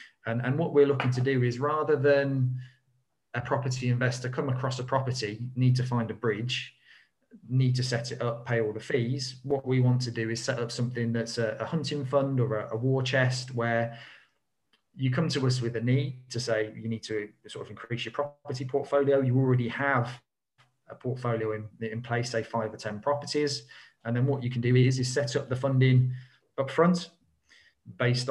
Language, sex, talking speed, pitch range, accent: English, male, 205 wpm, 120-135 Hz, British